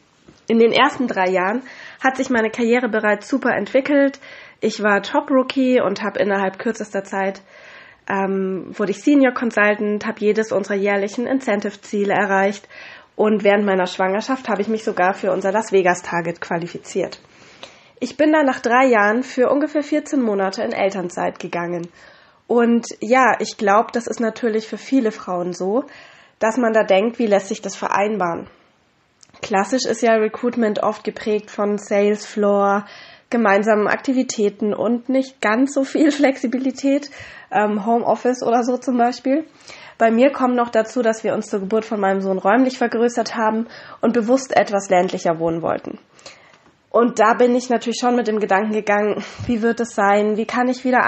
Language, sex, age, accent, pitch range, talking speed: German, female, 20-39, German, 205-245 Hz, 165 wpm